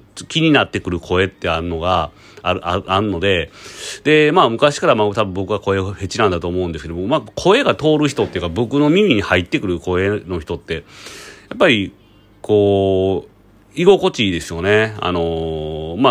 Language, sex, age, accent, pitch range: Japanese, male, 40-59, native, 85-130 Hz